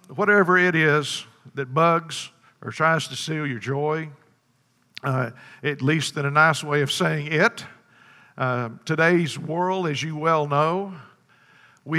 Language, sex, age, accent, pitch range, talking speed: English, male, 50-69, American, 130-160 Hz, 145 wpm